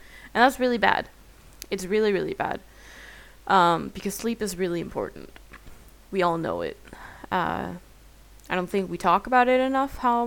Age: 10-29